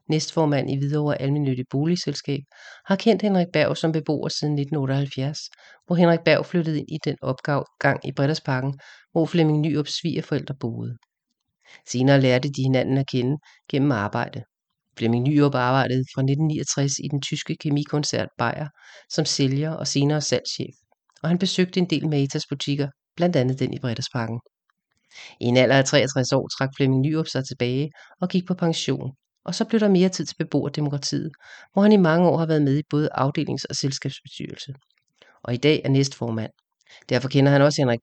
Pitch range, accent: 135-160 Hz, Danish